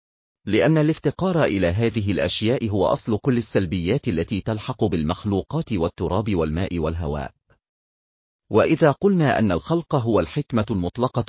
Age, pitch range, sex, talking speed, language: 40-59, 90-135 Hz, male, 115 wpm, Arabic